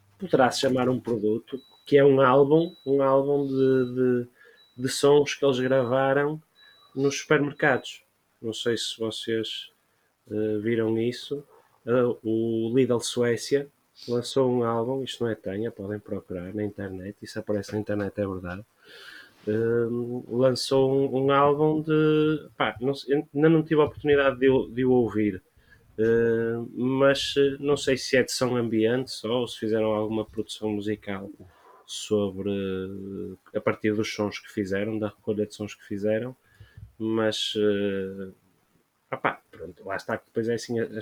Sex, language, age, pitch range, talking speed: male, Portuguese, 20-39, 105-130 Hz, 140 wpm